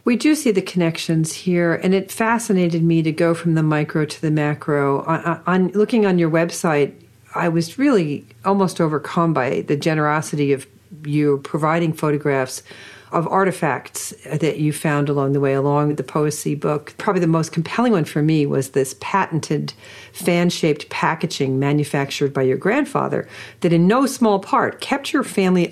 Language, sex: English, female